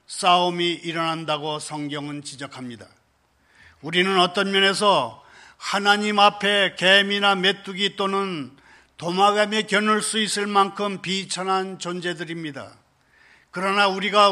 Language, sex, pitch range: Korean, male, 165-210 Hz